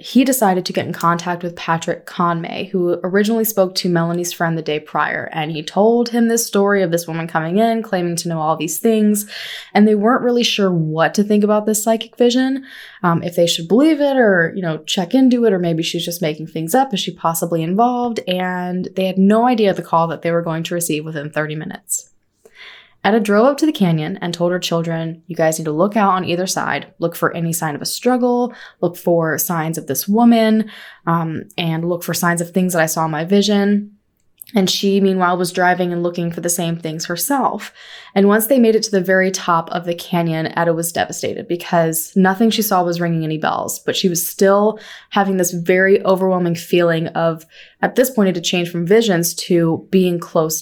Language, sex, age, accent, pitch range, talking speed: English, female, 20-39, American, 170-205 Hz, 220 wpm